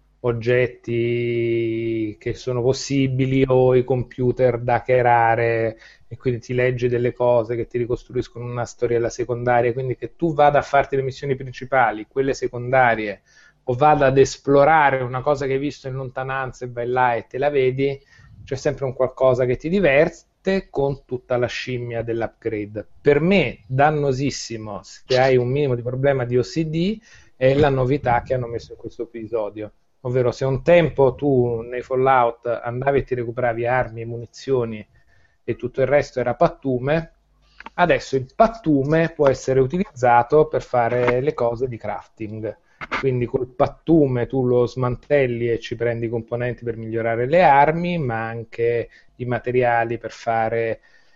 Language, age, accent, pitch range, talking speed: Italian, 30-49, native, 120-135 Hz, 160 wpm